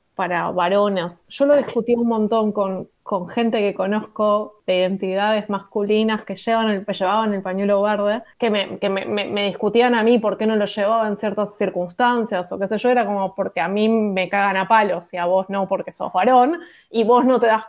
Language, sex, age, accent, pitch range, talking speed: Spanish, female, 20-39, Argentinian, 200-240 Hz, 220 wpm